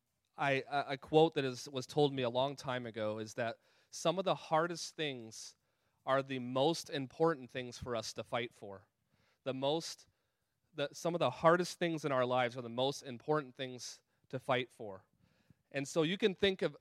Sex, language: male, English